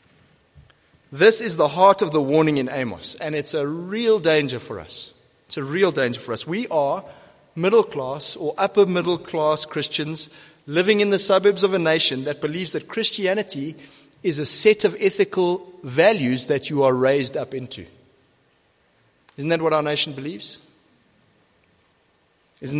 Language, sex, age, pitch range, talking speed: English, male, 30-49, 140-180 Hz, 155 wpm